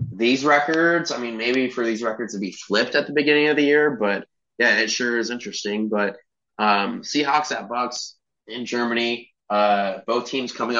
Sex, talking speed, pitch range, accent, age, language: male, 190 wpm, 105-120 Hz, American, 20-39, English